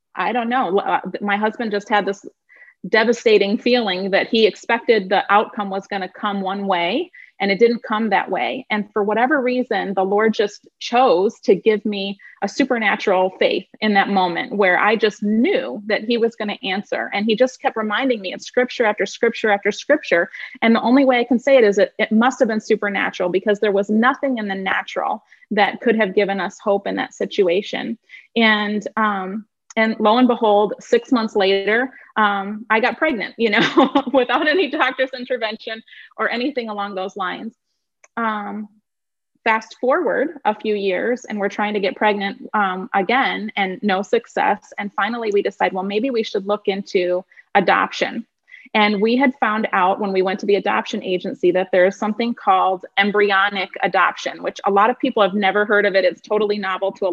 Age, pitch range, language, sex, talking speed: 30-49, 200-245 Hz, English, female, 190 wpm